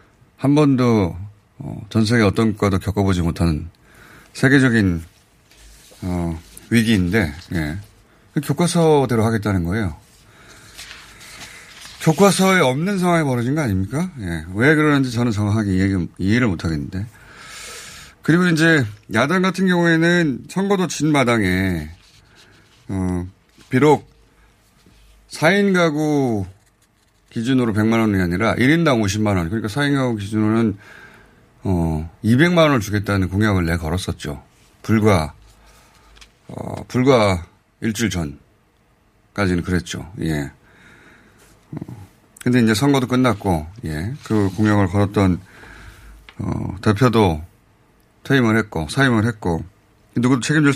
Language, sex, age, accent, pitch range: Korean, male, 30-49, native, 95-125 Hz